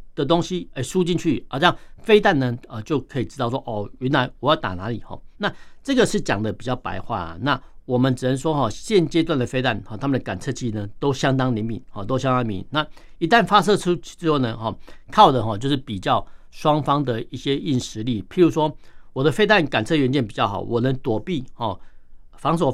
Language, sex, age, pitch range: Chinese, male, 60-79, 110-155 Hz